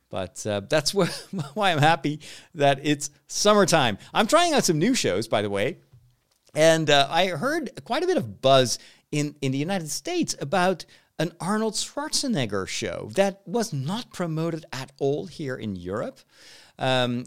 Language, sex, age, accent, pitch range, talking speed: English, male, 50-69, American, 115-175 Hz, 165 wpm